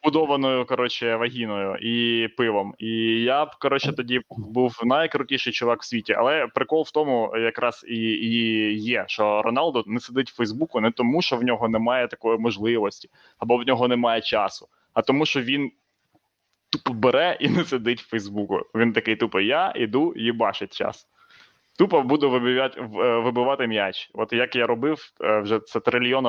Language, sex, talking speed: Ukrainian, male, 160 wpm